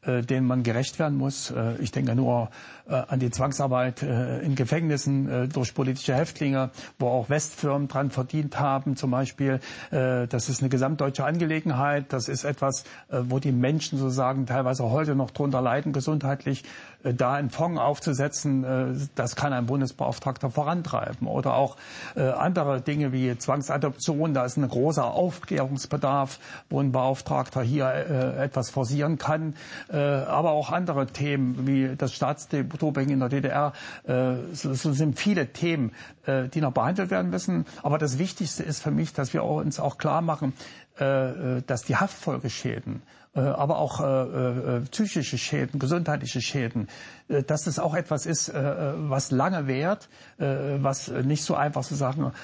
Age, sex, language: 60-79, male, German